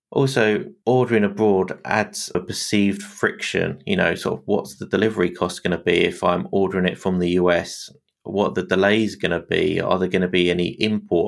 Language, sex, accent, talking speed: English, male, British, 215 wpm